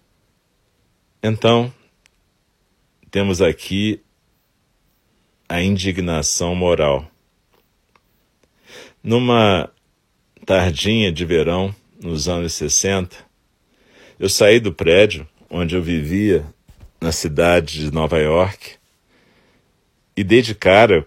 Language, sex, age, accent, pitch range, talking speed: Portuguese, male, 40-59, Brazilian, 85-105 Hz, 85 wpm